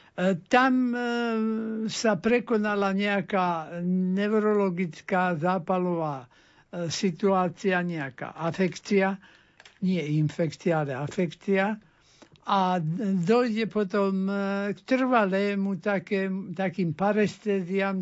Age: 60-79